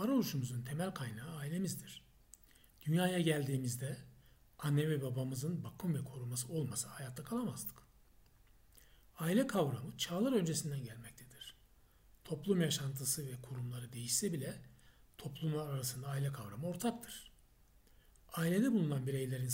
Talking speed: 105 wpm